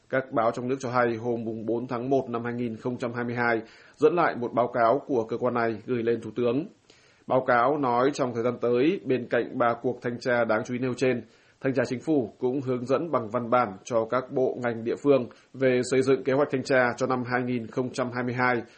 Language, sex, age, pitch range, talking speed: Vietnamese, male, 20-39, 120-130 Hz, 220 wpm